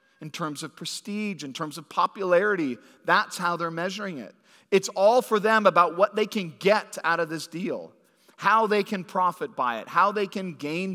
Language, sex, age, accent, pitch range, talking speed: English, male, 40-59, American, 150-210 Hz, 195 wpm